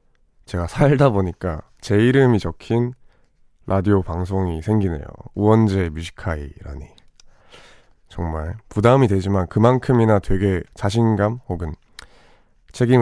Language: Korean